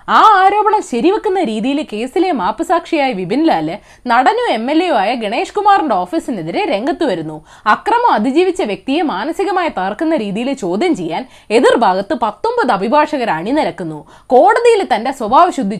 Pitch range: 230-345 Hz